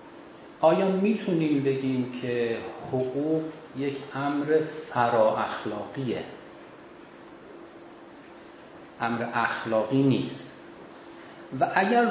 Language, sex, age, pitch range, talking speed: Persian, male, 40-59, 125-165 Hz, 65 wpm